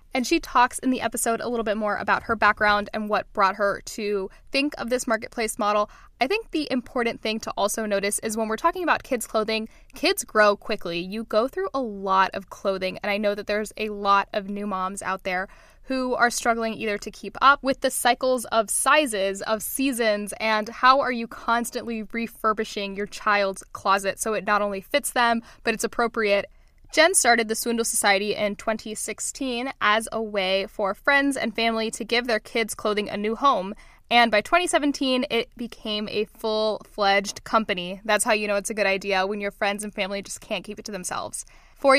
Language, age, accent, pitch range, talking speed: English, 10-29, American, 205-245 Hz, 205 wpm